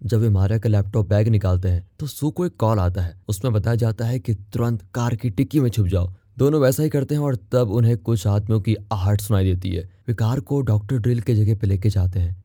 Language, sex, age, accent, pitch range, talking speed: Hindi, male, 20-39, native, 100-120 Hz, 255 wpm